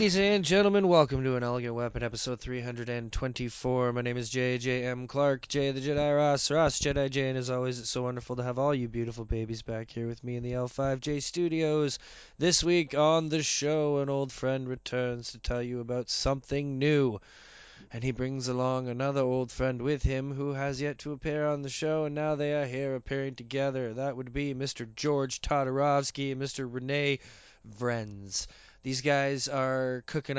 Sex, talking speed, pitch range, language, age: male, 185 wpm, 120-140 Hz, English, 20-39